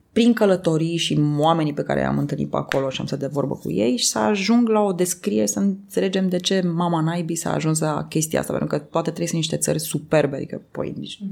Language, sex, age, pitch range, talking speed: Romanian, female, 20-39, 150-195 Hz, 235 wpm